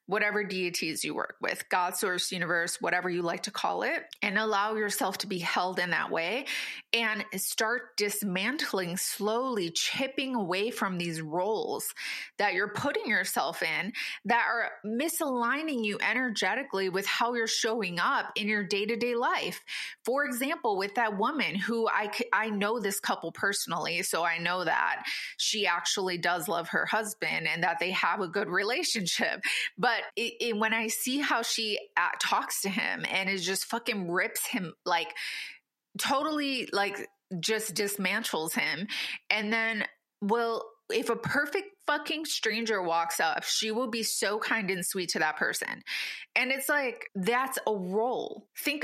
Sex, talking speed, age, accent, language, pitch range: female, 160 wpm, 20-39, American, English, 190-235 Hz